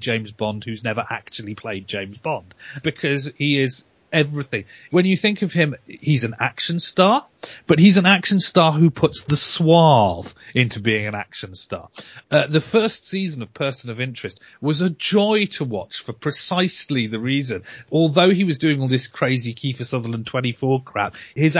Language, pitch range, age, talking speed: English, 120-160 Hz, 40-59, 180 wpm